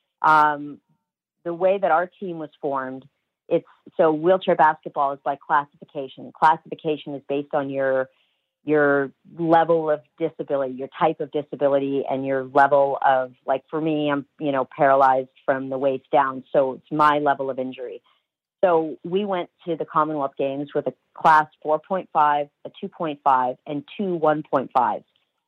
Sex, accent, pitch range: female, American, 145-170 Hz